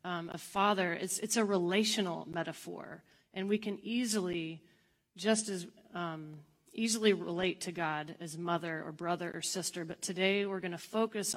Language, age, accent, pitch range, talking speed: English, 30-49, American, 175-220 Hz, 165 wpm